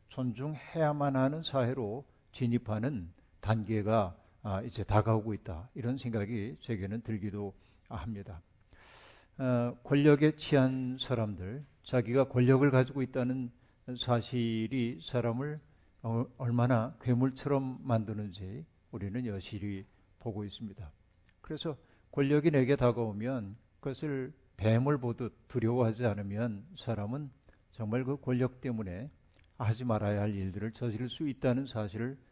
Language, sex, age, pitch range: Korean, male, 50-69, 110-135 Hz